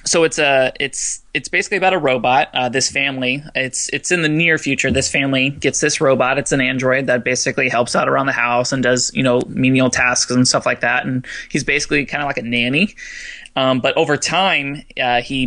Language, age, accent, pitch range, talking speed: English, 20-39, American, 130-150 Hz, 220 wpm